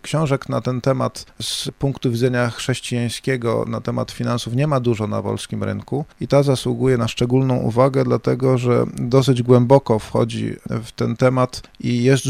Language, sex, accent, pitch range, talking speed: Polish, male, native, 110-125 Hz, 160 wpm